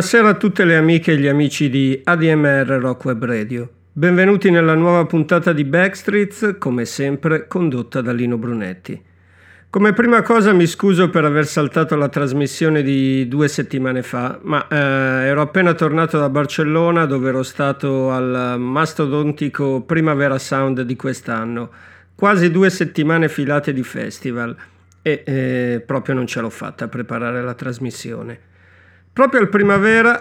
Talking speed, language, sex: 145 wpm, Italian, male